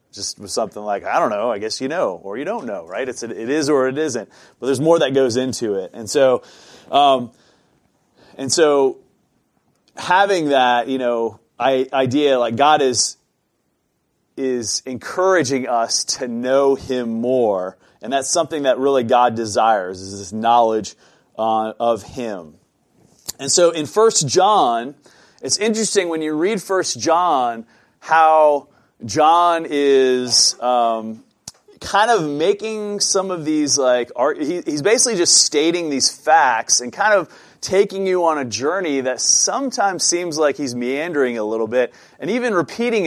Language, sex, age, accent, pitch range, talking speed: English, male, 30-49, American, 120-175 Hz, 155 wpm